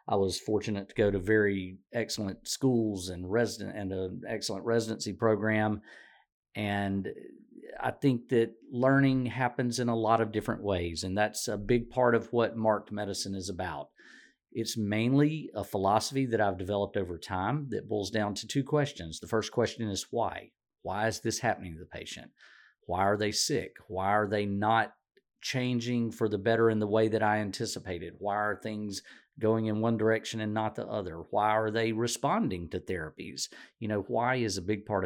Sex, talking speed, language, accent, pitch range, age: male, 185 wpm, English, American, 95-115 Hz, 40-59